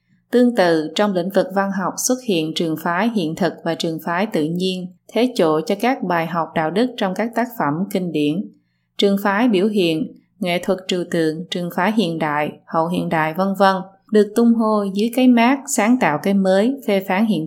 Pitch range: 165-215 Hz